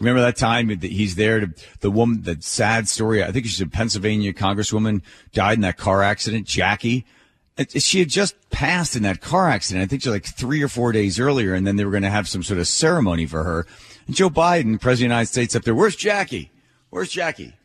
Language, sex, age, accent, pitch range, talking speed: English, male, 40-59, American, 105-150 Hz, 230 wpm